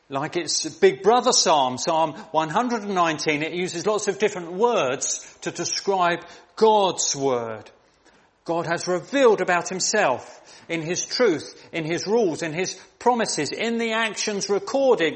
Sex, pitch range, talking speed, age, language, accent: male, 150-210 Hz, 140 wpm, 40-59, English, British